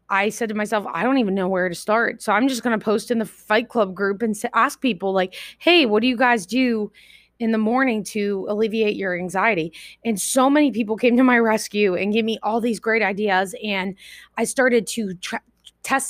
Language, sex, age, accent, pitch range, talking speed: English, female, 20-39, American, 190-235 Hz, 220 wpm